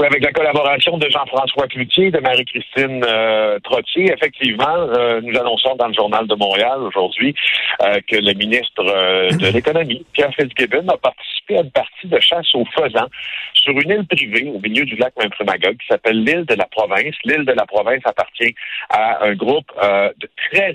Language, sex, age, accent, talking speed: French, male, 60-79, French, 190 wpm